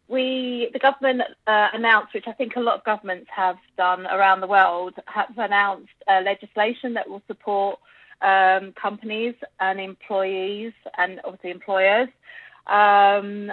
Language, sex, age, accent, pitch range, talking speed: Swedish, female, 20-39, British, 195-225 Hz, 140 wpm